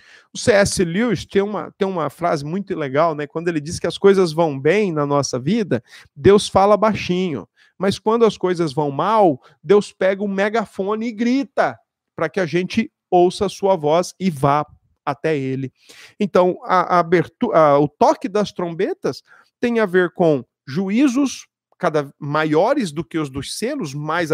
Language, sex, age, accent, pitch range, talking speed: Portuguese, male, 50-69, Brazilian, 155-210 Hz, 175 wpm